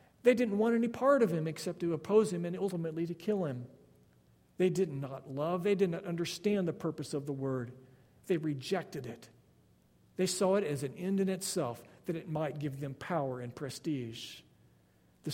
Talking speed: 190 wpm